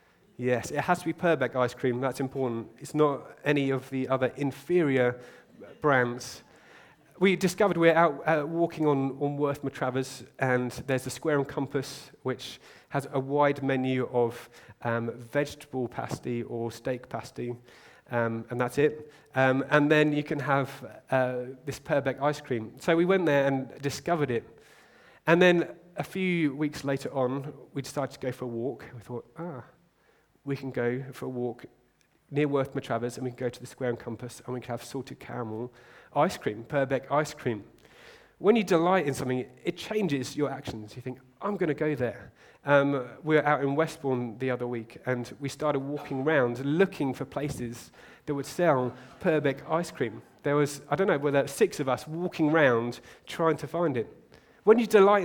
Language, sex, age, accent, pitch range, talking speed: English, male, 30-49, British, 125-150 Hz, 185 wpm